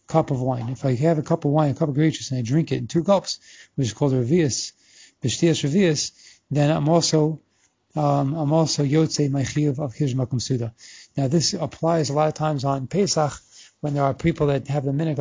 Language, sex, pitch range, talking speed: English, male, 135-155 Hz, 200 wpm